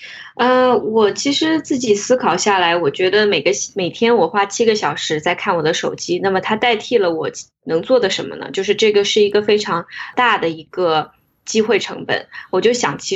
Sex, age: female, 20-39